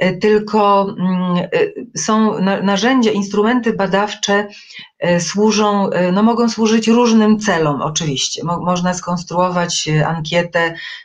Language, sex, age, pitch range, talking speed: Polish, female, 40-59, 160-185 Hz, 80 wpm